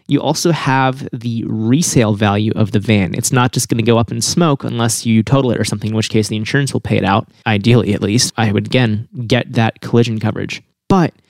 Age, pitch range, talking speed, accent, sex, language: 20-39, 110-130 Hz, 235 wpm, American, male, English